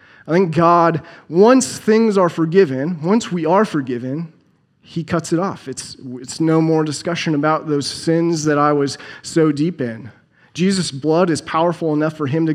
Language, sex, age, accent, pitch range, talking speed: English, male, 30-49, American, 140-170 Hz, 175 wpm